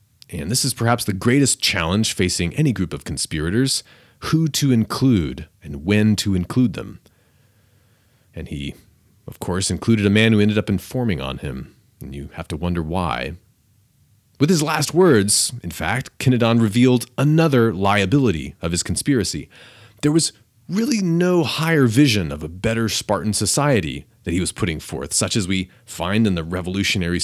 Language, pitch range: English, 95-125 Hz